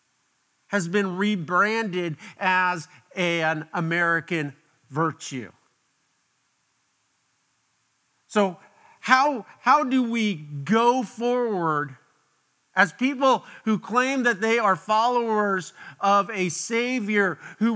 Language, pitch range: English, 175-230 Hz